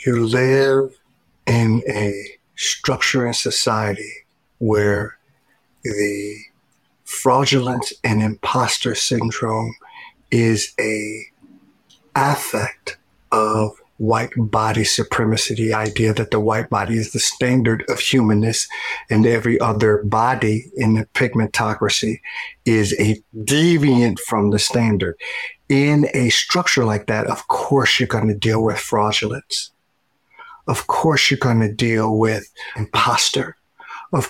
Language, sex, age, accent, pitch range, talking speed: English, male, 50-69, American, 105-125 Hz, 115 wpm